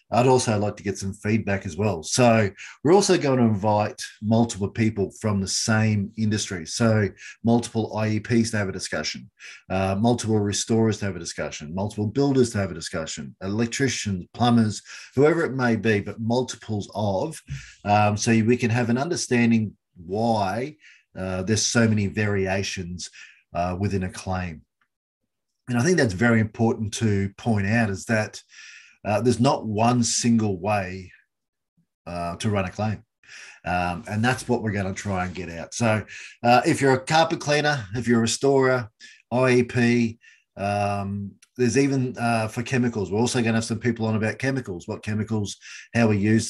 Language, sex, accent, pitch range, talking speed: English, male, Australian, 100-120 Hz, 170 wpm